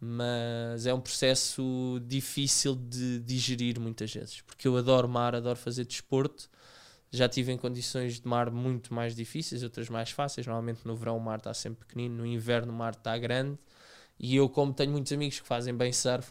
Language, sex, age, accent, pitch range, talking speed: Portuguese, male, 20-39, Brazilian, 115-130 Hz, 190 wpm